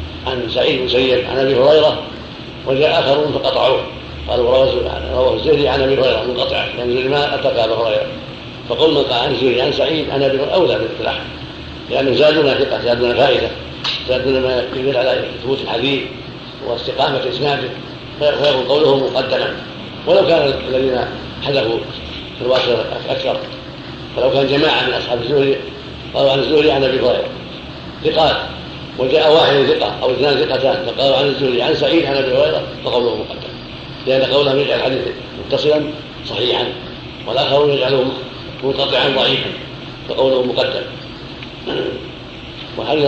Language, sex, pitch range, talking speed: Arabic, male, 130-150 Hz, 140 wpm